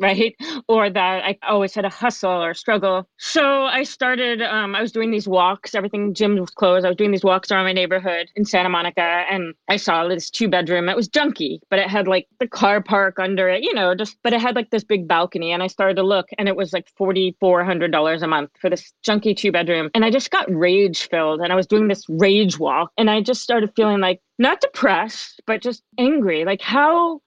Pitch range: 185-230 Hz